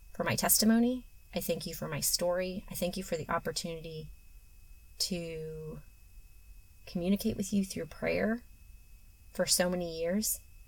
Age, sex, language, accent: 30-49, female, English, American